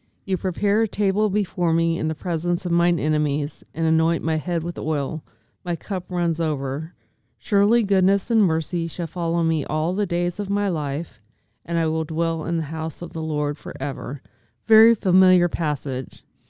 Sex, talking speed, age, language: female, 180 wpm, 30-49, English